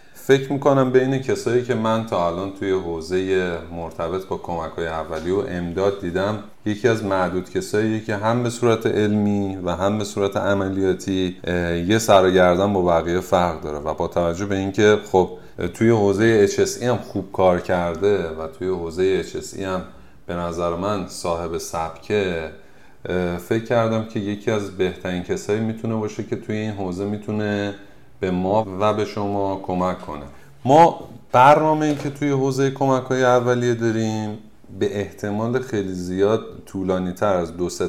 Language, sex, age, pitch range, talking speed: Persian, male, 30-49, 90-110 Hz, 160 wpm